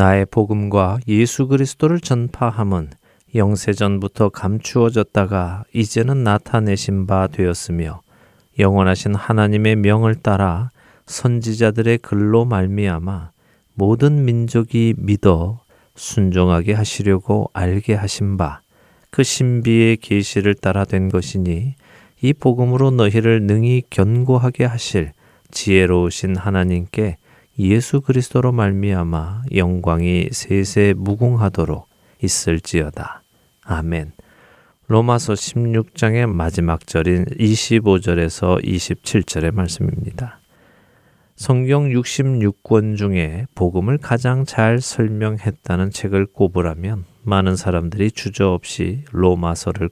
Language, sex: Korean, male